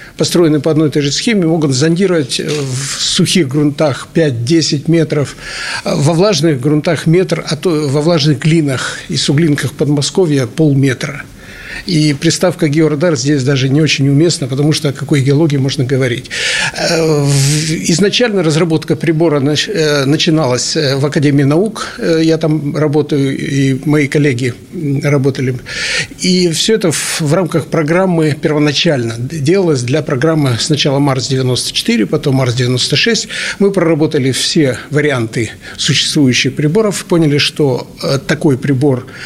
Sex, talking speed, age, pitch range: male, 120 wpm, 60-79, 140-170 Hz